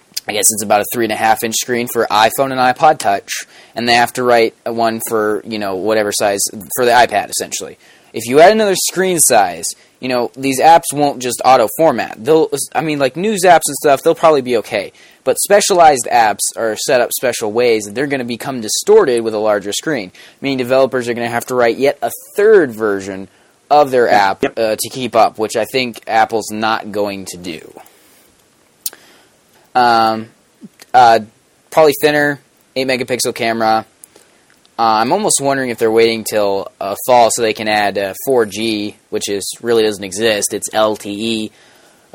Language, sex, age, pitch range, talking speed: English, male, 20-39, 105-135 Hz, 180 wpm